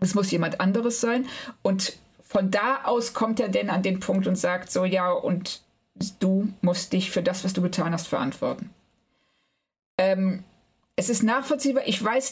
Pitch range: 185-230 Hz